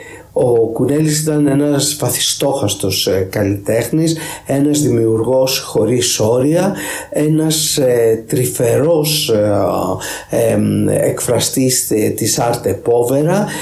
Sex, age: male, 50-69